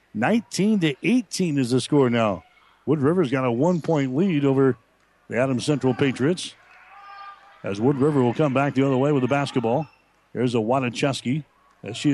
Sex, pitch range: male, 125-150 Hz